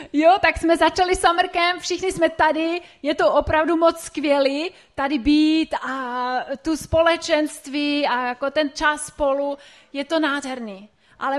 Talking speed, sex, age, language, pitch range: 150 wpm, female, 30-49, Czech, 245-330 Hz